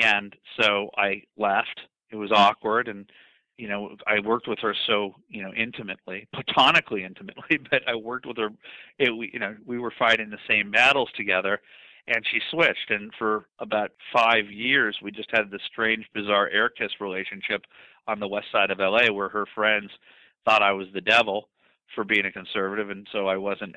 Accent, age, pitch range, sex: American, 40-59, 100-110 Hz, male